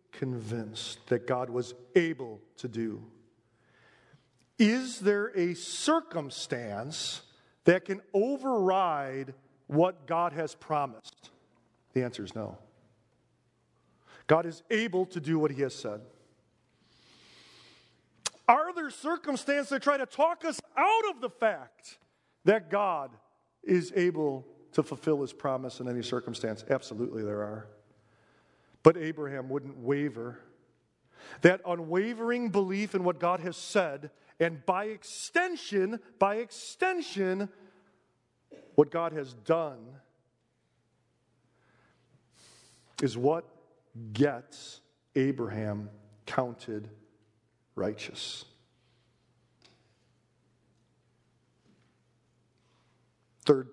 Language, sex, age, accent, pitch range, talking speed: English, male, 40-59, American, 120-185 Hz, 95 wpm